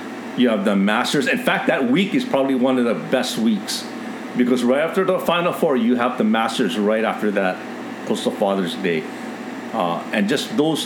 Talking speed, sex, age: 195 wpm, male, 50-69